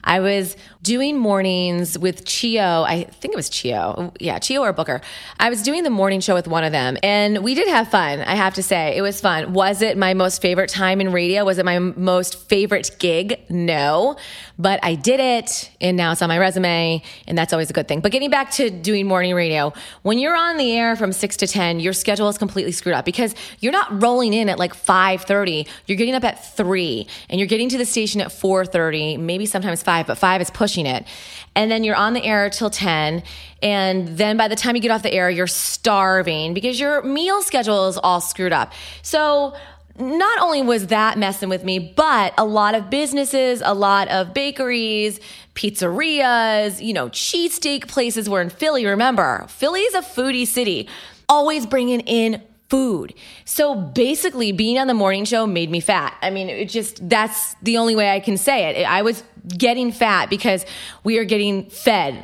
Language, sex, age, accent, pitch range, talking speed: English, female, 20-39, American, 185-245 Hz, 205 wpm